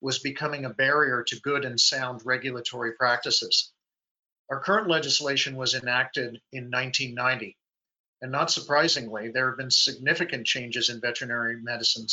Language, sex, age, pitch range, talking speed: English, male, 50-69, 125-145 Hz, 140 wpm